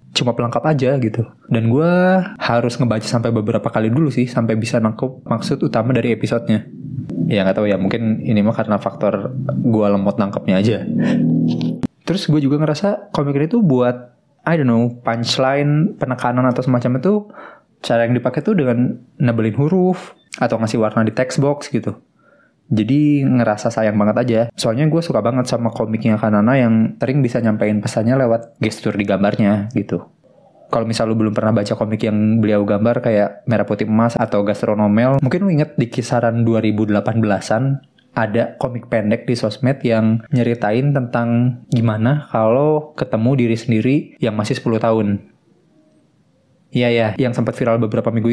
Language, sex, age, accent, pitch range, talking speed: Indonesian, male, 20-39, native, 110-130 Hz, 165 wpm